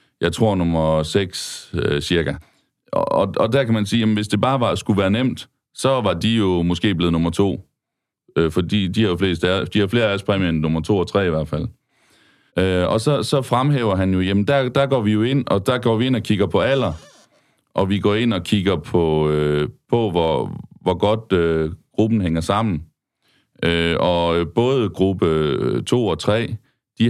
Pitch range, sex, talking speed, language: 85-110 Hz, male, 210 wpm, Danish